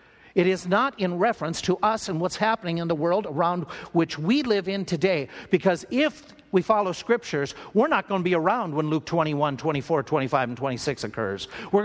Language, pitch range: English, 145-200 Hz